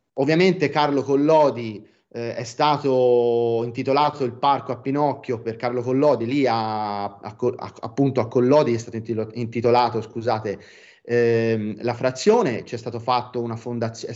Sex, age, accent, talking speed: male, 30-49, native, 110 wpm